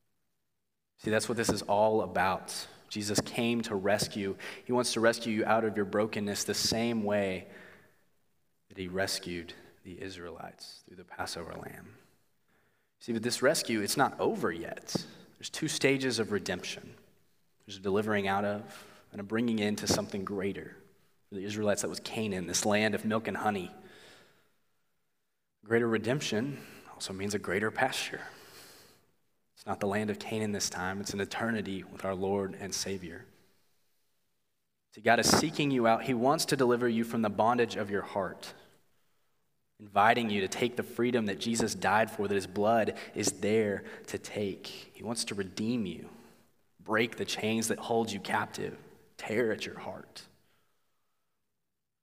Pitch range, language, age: 95-115 Hz, English, 30-49